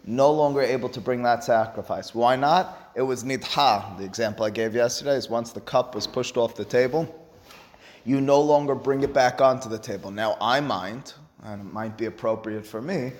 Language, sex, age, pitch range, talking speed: English, male, 30-49, 115-145 Hz, 205 wpm